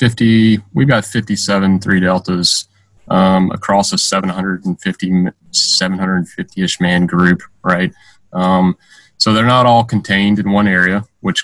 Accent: American